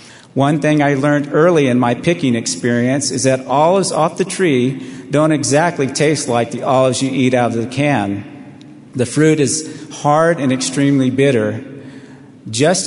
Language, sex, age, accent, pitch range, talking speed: English, male, 50-69, American, 120-145 Hz, 165 wpm